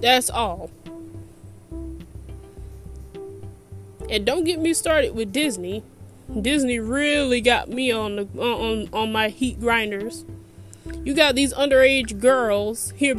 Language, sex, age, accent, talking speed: English, female, 20-39, American, 120 wpm